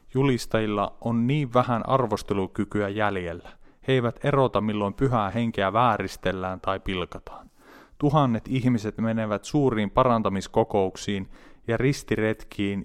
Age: 30-49